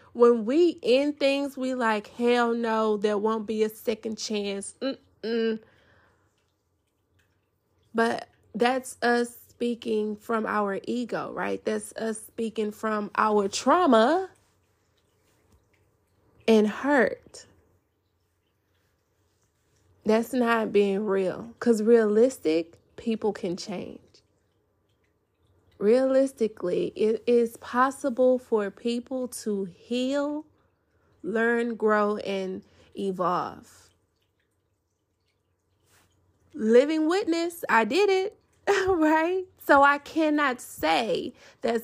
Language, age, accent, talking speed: English, 20-39, American, 90 wpm